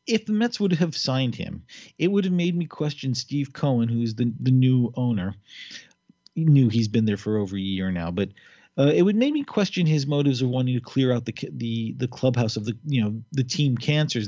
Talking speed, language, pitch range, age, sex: 235 wpm, English, 115-150 Hz, 40-59, male